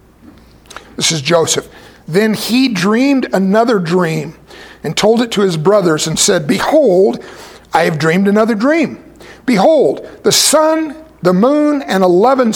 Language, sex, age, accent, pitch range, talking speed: English, male, 60-79, American, 160-210 Hz, 140 wpm